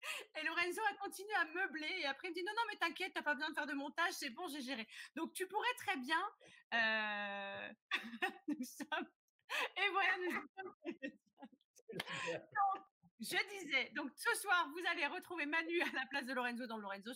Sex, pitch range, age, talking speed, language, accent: female, 225-315 Hz, 30-49, 195 wpm, French, French